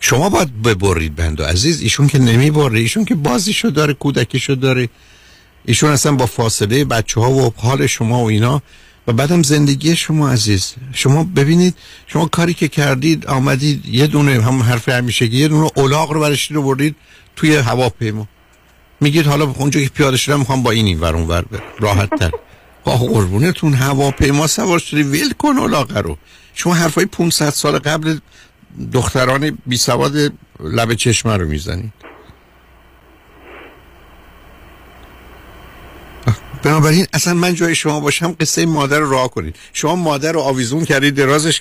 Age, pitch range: 50-69, 105-150 Hz